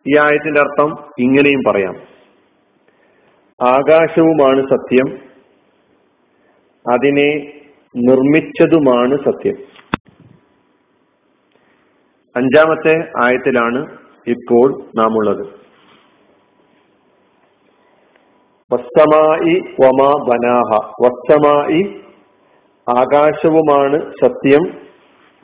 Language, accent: Malayalam, native